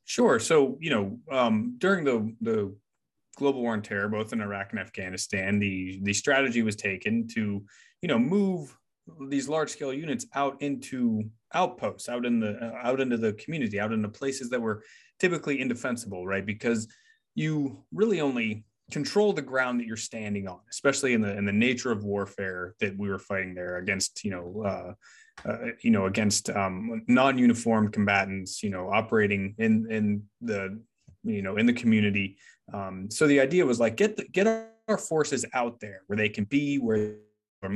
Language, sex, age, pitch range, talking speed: English, male, 20-39, 100-135 Hz, 180 wpm